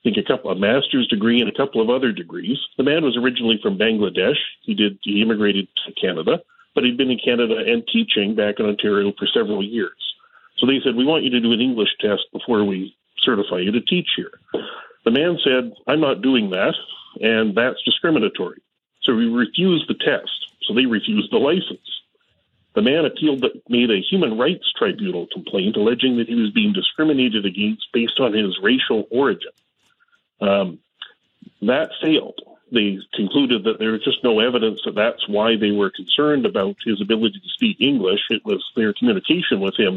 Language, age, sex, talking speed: English, 40-59, male, 190 wpm